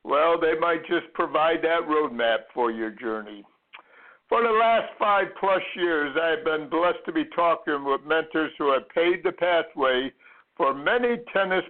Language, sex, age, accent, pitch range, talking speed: English, male, 60-79, American, 160-200 Hz, 165 wpm